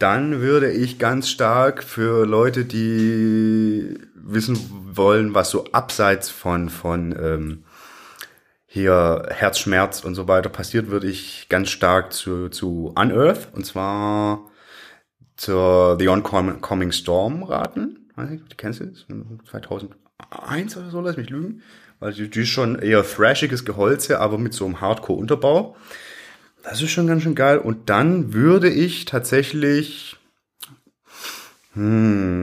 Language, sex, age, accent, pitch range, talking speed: German, male, 30-49, German, 95-125 Hz, 130 wpm